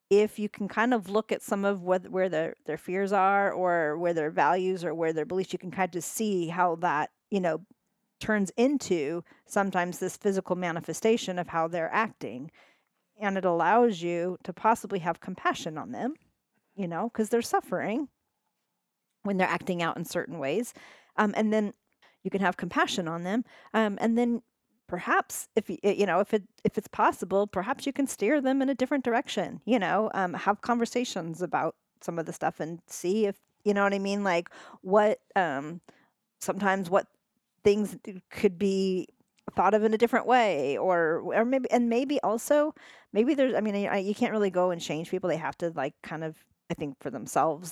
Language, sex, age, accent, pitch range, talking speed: English, female, 40-59, American, 175-225 Hz, 190 wpm